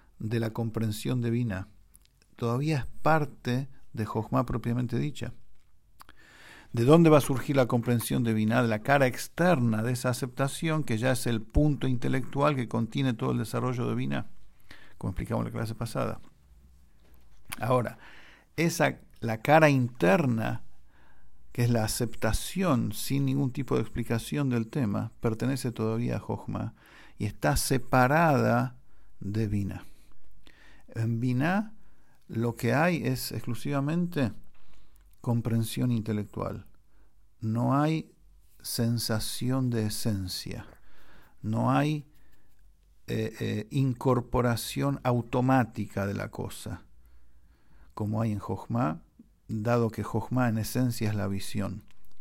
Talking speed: 120 wpm